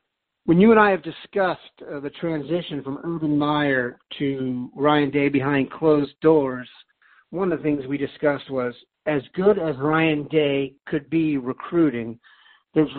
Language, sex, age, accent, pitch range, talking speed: English, male, 50-69, American, 130-155 Hz, 155 wpm